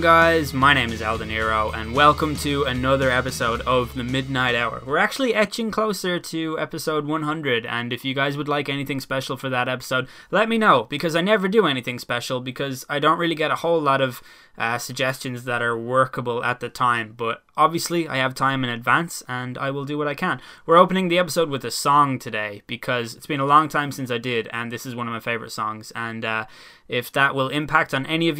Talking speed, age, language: 230 wpm, 10-29, English